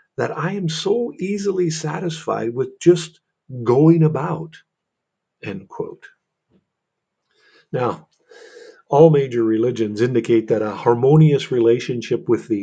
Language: English